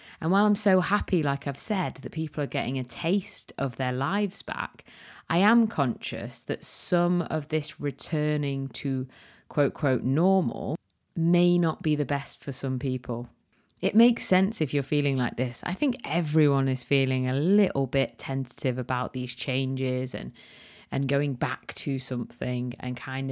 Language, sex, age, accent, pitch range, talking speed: English, female, 30-49, British, 130-165 Hz, 170 wpm